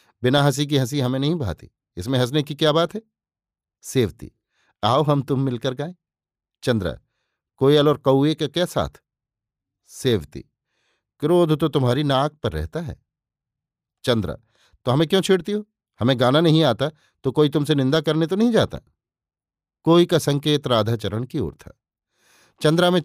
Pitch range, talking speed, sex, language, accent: 115-150 Hz, 160 wpm, male, Hindi, native